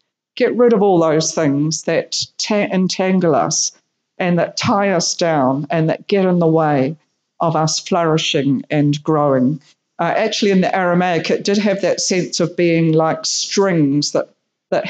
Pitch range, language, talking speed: 160-190 Hz, English, 170 wpm